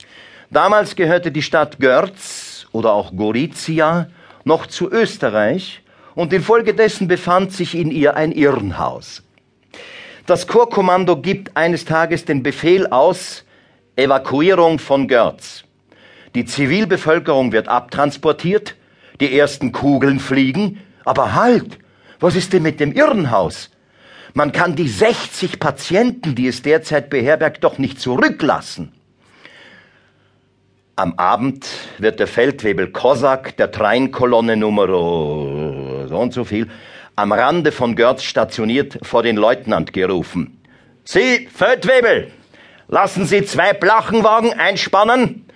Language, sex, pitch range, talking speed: German, male, 135-200 Hz, 115 wpm